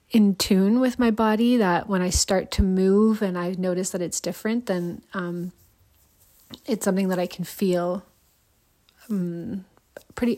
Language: English